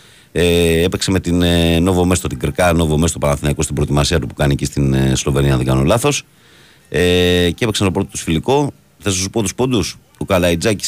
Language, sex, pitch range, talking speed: Greek, male, 80-105 Hz, 230 wpm